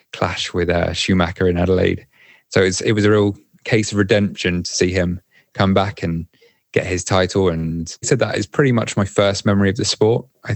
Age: 20-39